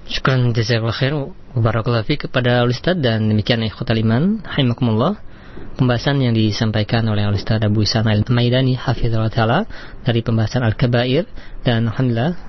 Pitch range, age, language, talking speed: 115-130 Hz, 20-39, Malay, 115 wpm